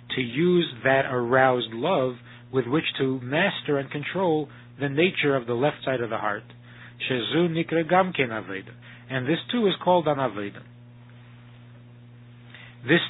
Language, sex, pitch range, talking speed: English, male, 120-150 Hz, 130 wpm